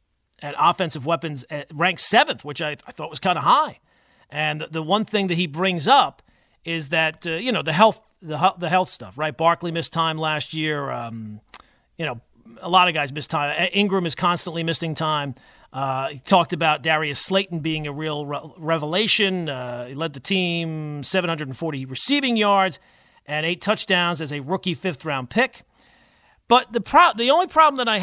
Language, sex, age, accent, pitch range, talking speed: English, male, 40-59, American, 155-195 Hz, 190 wpm